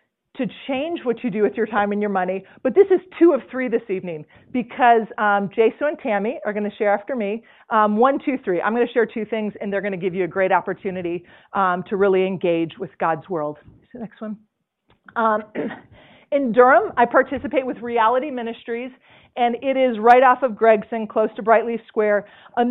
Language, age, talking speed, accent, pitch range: English, 40-59, 205 wpm, American, 205-255 Hz